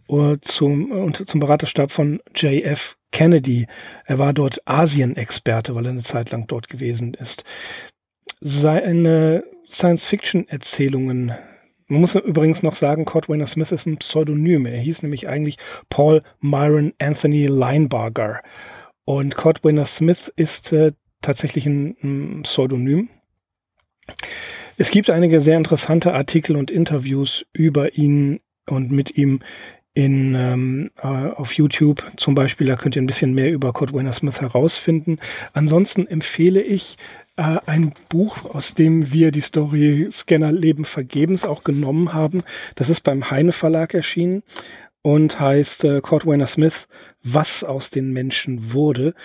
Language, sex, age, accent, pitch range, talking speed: German, male, 40-59, German, 140-160 Hz, 135 wpm